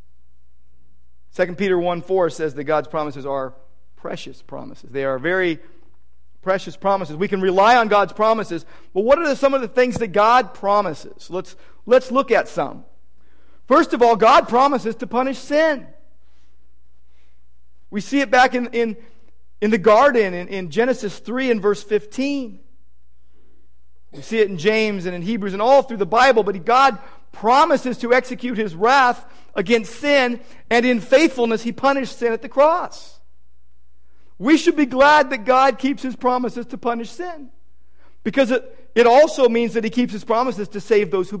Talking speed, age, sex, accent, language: 170 wpm, 50-69, male, American, English